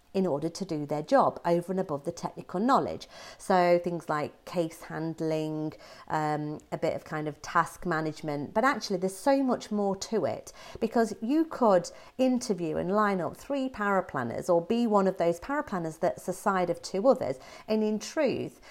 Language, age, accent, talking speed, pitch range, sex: English, 40-59, British, 190 wpm, 170-230 Hz, female